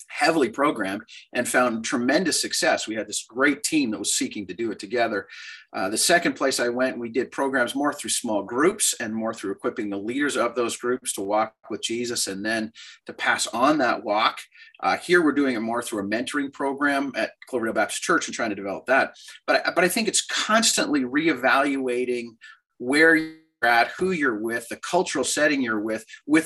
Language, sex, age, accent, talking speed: English, male, 30-49, American, 205 wpm